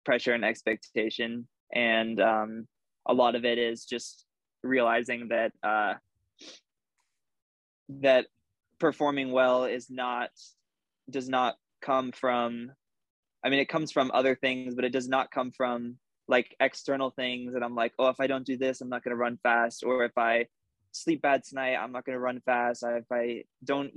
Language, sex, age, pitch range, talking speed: English, male, 20-39, 115-130 Hz, 175 wpm